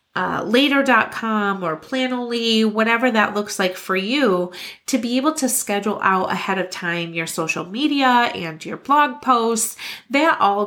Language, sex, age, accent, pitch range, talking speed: English, female, 30-49, American, 175-230 Hz, 155 wpm